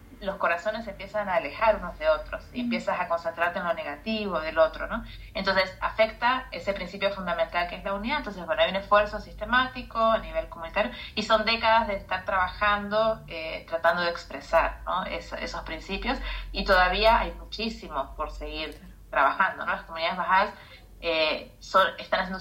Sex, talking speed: female, 170 wpm